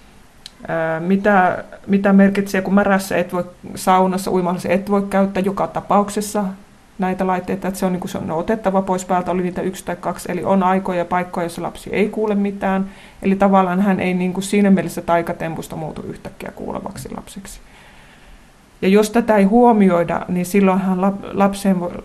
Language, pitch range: Finnish, 180-205 Hz